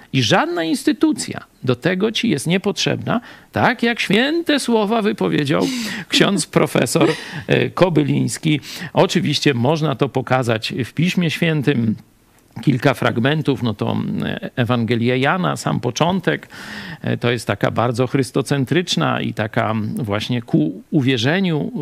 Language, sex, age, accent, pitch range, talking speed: Polish, male, 50-69, native, 130-215 Hz, 115 wpm